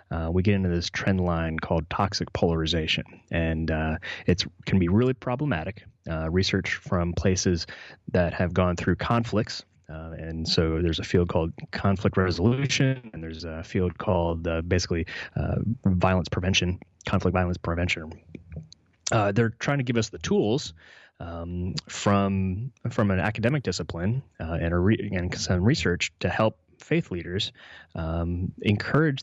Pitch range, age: 85-110 Hz, 20-39